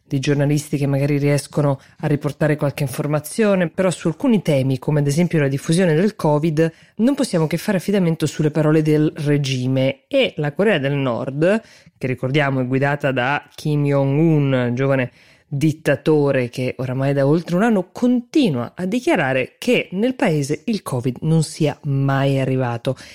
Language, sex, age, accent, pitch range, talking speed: Italian, female, 20-39, native, 140-175 Hz, 160 wpm